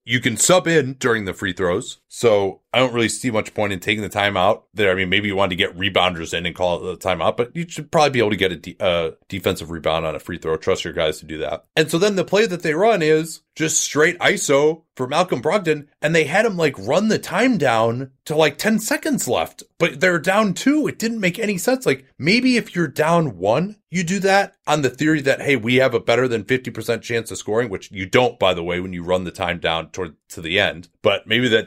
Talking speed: 265 wpm